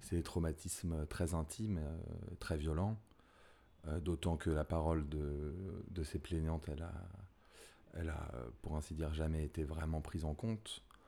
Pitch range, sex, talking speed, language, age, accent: 80-95 Hz, male, 155 wpm, French, 30-49, French